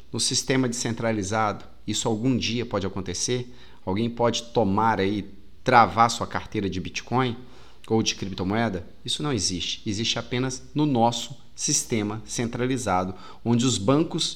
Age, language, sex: 30-49, Portuguese, male